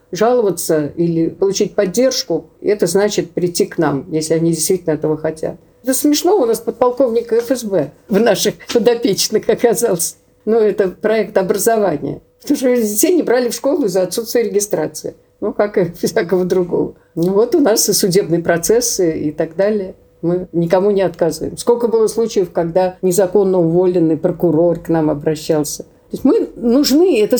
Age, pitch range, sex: 50-69, 180-245 Hz, female